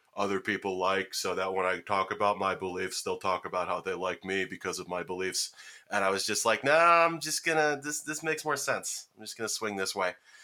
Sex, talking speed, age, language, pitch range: male, 245 wpm, 20-39, English, 95-110 Hz